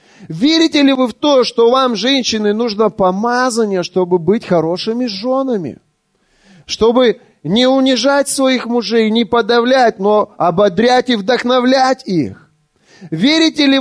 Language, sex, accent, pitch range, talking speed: Russian, male, native, 200-260 Hz, 120 wpm